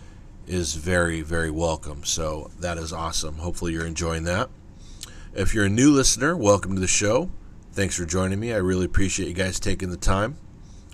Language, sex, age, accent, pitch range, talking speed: English, male, 40-59, American, 85-100 Hz, 180 wpm